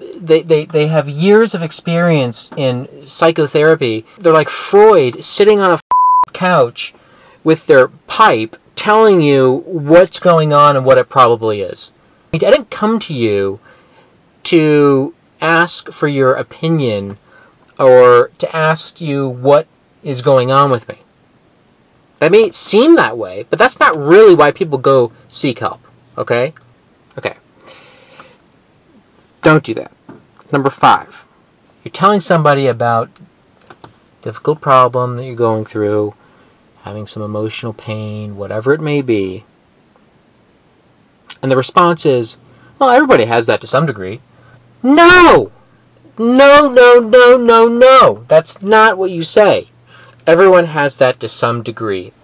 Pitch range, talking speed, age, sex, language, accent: 125-185 Hz, 135 wpm, 30-49, male, English, American